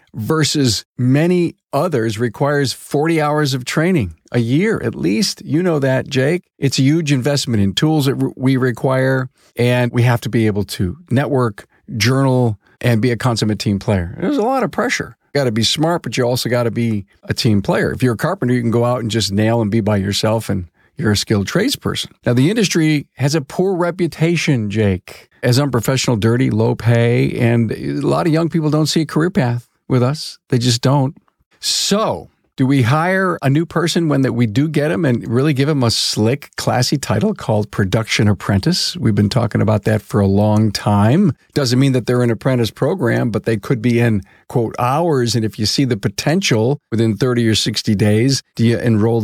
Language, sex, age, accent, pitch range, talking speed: English, male, 50-69, American, 110-140 Hz, 205 wpm